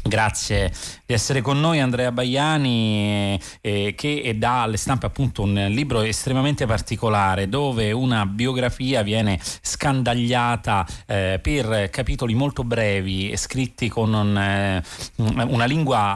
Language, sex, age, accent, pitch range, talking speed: Italian, male, 30-49, native, 95-125 Hz, 125 wpm